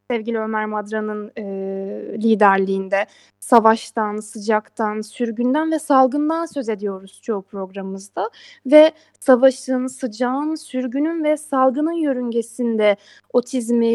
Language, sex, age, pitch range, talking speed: Turkish, female, 10-29, 220-310 Hz, 95 wpm